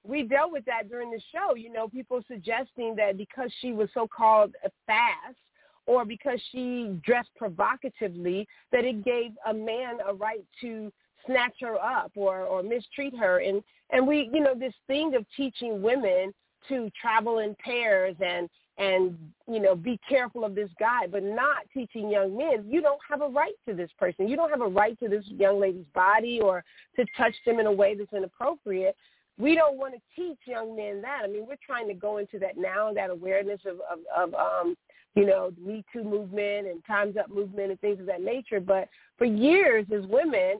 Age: 40-59